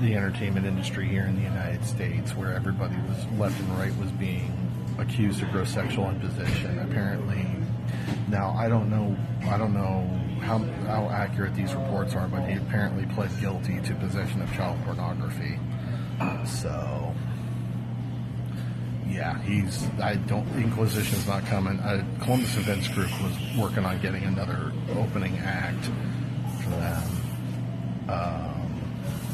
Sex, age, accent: male, 40-59, American